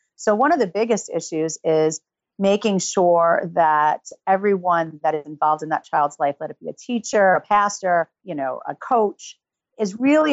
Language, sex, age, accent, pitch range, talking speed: English, female, 40-59, American, 160-200 Hz, 180 wpm